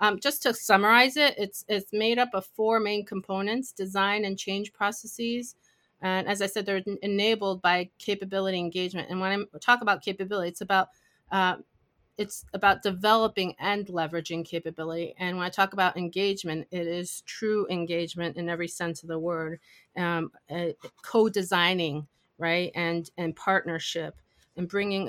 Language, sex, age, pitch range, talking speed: English, female, 30-49, 170-205 Hz, 160 wpm